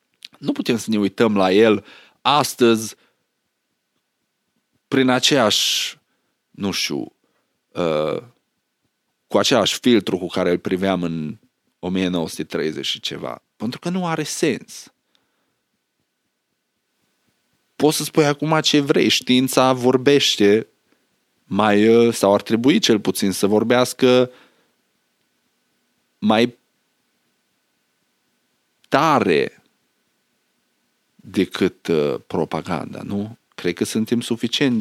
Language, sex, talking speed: Romanian, male, 90 wpm